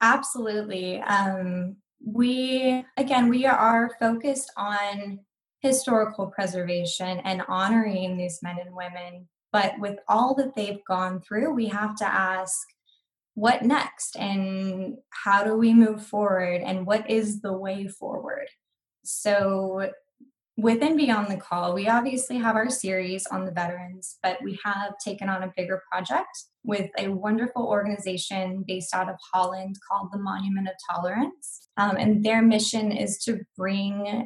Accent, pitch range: American, 185-225 Hz